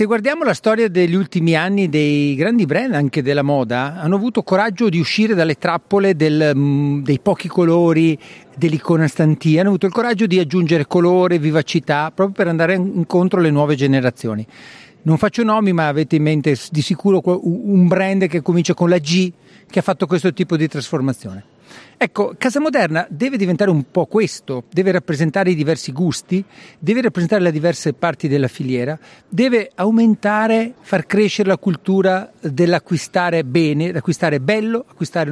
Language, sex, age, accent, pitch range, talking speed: Italian, male, 50-69, native, 155-195 Hz, 160 wpm